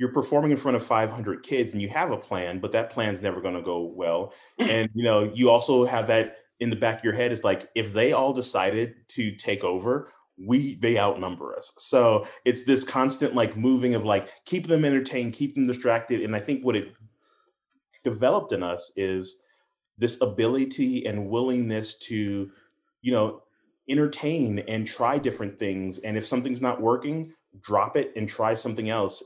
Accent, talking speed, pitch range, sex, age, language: American, 190 wpm, 105-125 Hz, male, 30-49, English